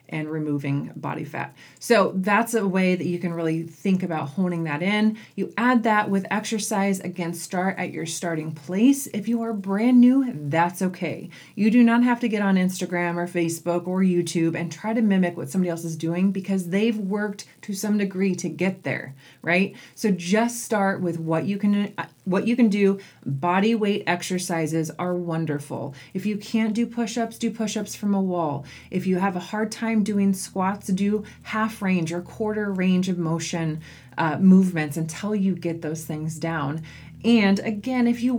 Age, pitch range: 30-49, 165-205 Hz